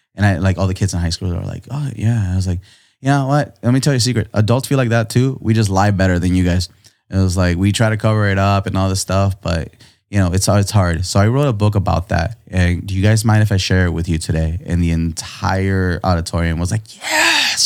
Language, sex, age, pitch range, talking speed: English, male, 20-39, 100-120 Hz, 280 wpm